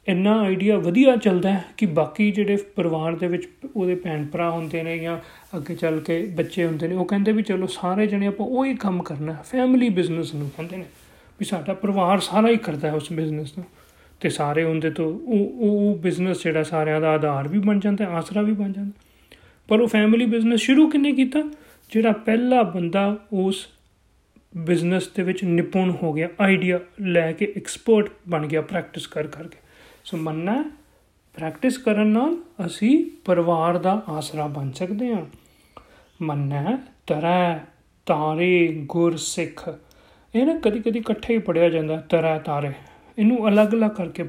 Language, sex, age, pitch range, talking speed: Punjabi, male, 40-59, 165-215 Hz, 145 wpm